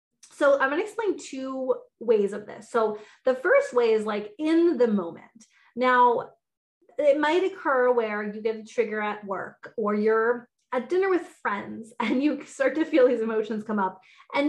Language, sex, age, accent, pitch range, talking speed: English, female, 20-39, American, 215-290 Hz, 185 wpm